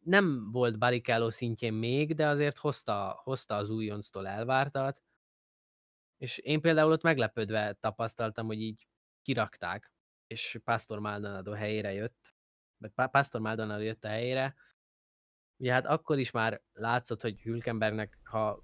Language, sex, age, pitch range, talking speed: Hungarian, male, 20-39, 105-130 Hz, 130 wpm